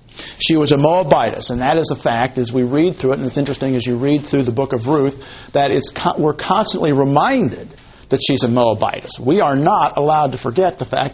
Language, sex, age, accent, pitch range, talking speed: English, male, 50-69, American, 125-150 Hz, 230 wpm